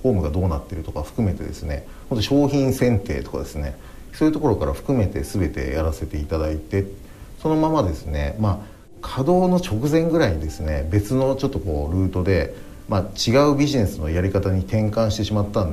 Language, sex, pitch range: Japanese, male, 80-115 Hz